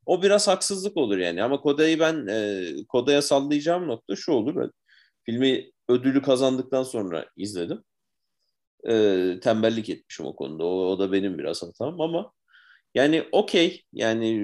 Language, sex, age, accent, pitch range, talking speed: Turkish, male, 40-59, native, 105-150 Hz, 140 wpm